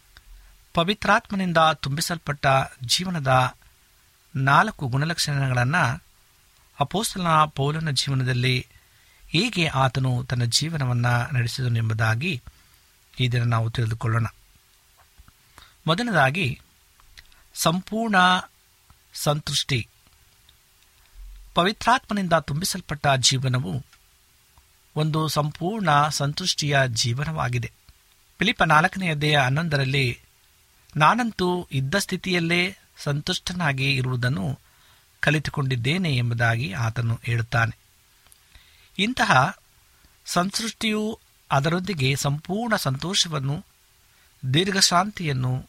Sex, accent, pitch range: male, native, 120-170 Hz